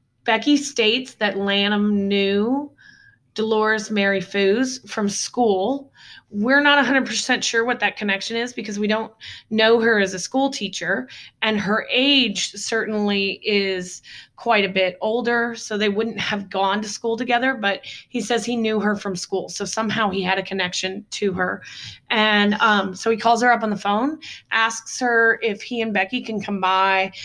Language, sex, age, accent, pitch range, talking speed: English, female, 20-39, American, 195-225 Hz, 175 wpm